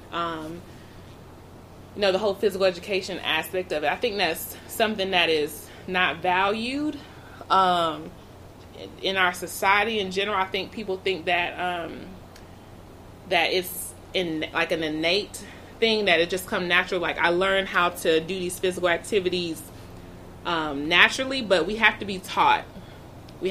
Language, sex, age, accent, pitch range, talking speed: English, female, 20-39, American, 155-195 Hz, 150 wpm